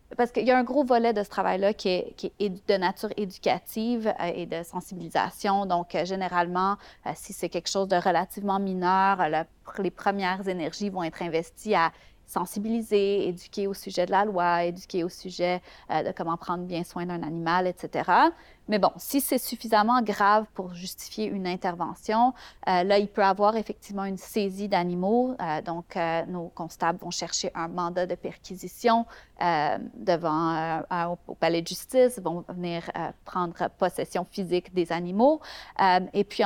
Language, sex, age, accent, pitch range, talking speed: French, female, 30-49, Canadian, 175-210 Hz, 170 wpm